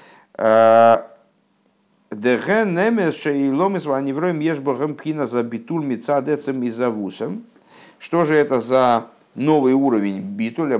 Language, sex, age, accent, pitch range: Russian, male, 50-69, native, 105-145 Hz